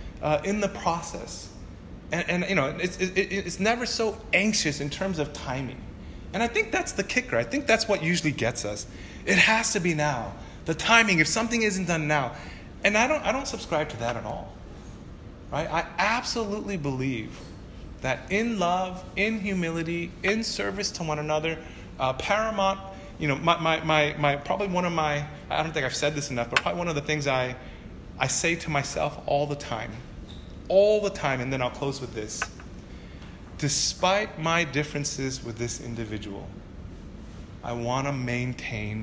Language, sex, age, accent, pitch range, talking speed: English, male, 30-49, American, 115-175 Hz, 180 wpm